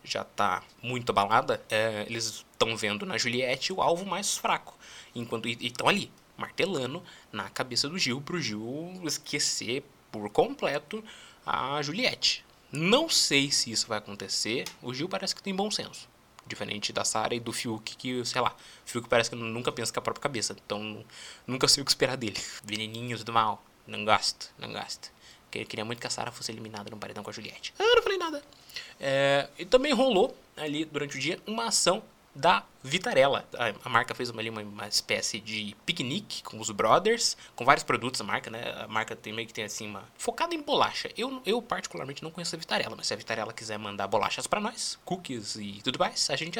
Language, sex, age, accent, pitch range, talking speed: Portuguese, male, 20-39, Brazilian, 115-175 Hz, 205 wpm